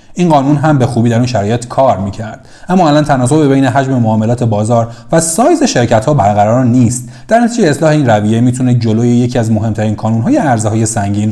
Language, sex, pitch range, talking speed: Persian, male, 110-145 Hz, 180 wpm